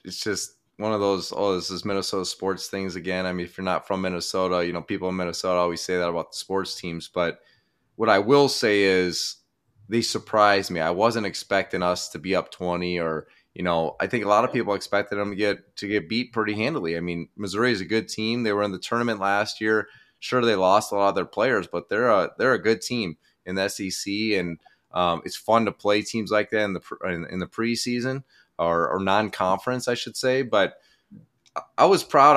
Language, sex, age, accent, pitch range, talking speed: English, male, 20-39, American, 95-110 Hz, 230 wpm